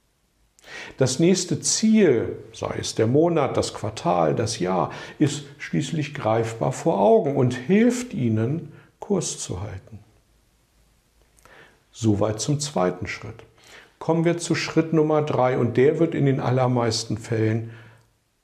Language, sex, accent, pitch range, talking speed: German, male, German, 110-155 Hz, 125 wpm